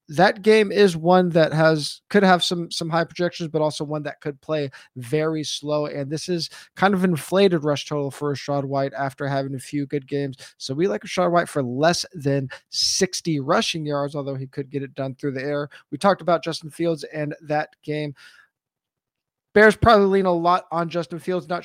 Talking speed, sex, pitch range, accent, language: 205 wpm, male, 135-165 Hz, American, English